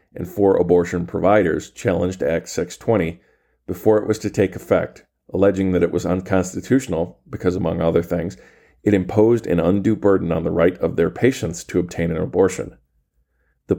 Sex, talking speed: male, 170 wpm